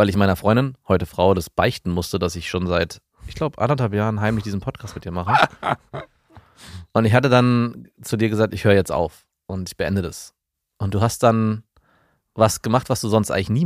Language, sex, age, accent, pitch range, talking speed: German, male, 30-49, German, 95-115 Hz, 210 wpm